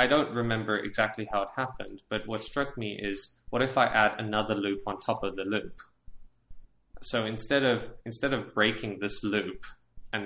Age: 20-39